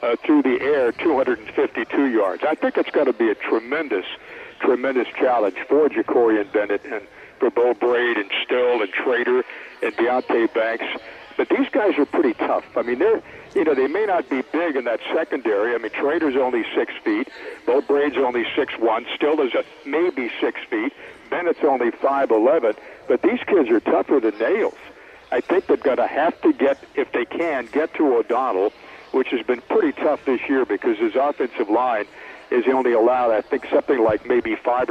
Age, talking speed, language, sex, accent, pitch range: 60-79, 185 wpm, English, male, American, 295-430 Hz